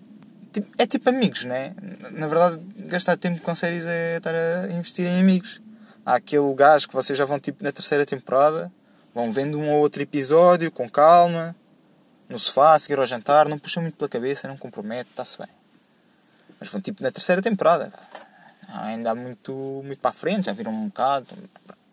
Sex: male